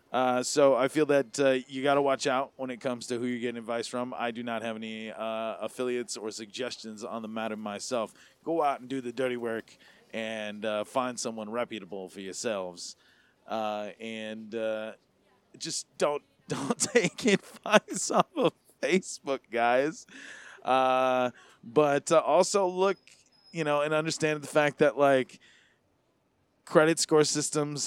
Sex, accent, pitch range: male, American, 110-130 Hz